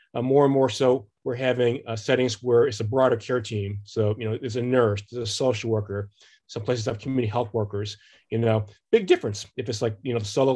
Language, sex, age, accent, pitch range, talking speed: English, male, 30-49, American, 110-130 Hz, 235 wpm